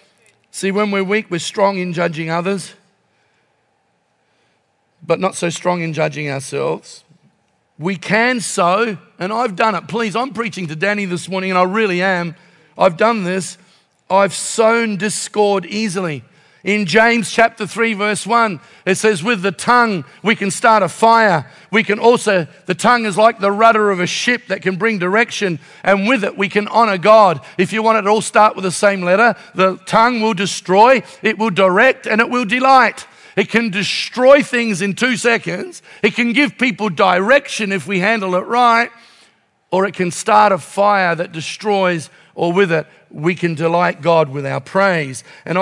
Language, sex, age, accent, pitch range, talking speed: English, male, 50-69, Australian, 175-215 Hz, 180 wpm